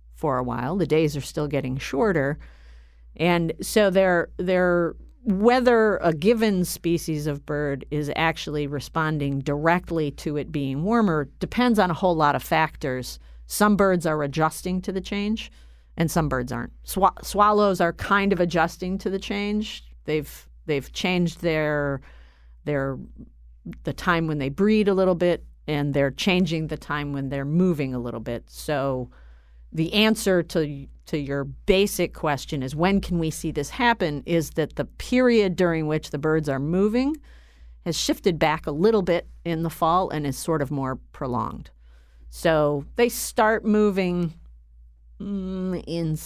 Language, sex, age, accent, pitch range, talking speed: English, female, 50-69, American, 140-195 Hz, 160 wpm